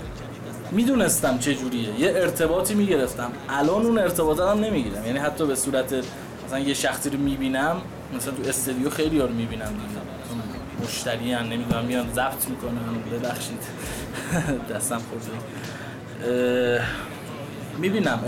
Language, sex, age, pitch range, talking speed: Persian, male, 20-39, 120-160 Hz, 125 wpm